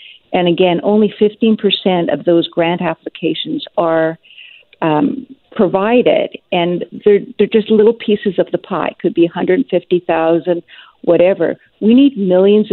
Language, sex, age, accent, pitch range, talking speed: English, female, 50-69, American, 175-220 Hz, 130 wpm